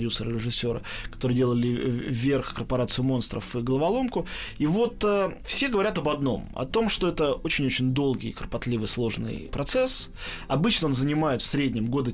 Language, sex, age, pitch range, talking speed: Russian, male, 20-39, 125-175 Hz, 150 wpm